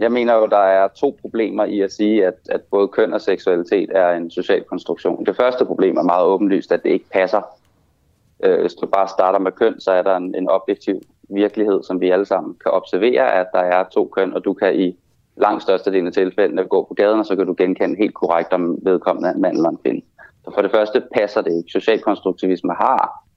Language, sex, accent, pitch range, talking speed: Danish, male, native, 90-115 Hz, 225 wpm